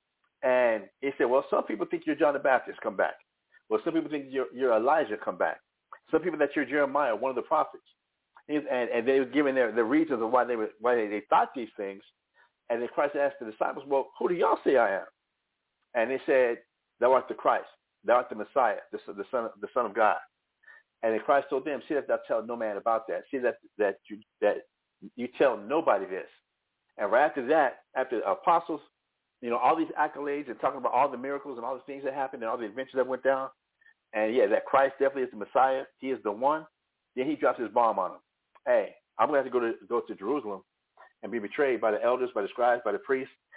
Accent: American